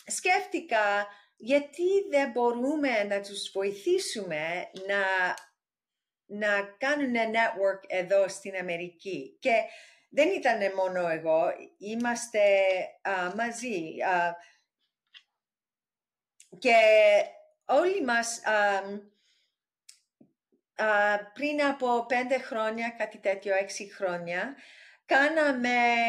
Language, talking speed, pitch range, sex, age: Greek, 80 wpm, 195-285 Hz, female, 40-59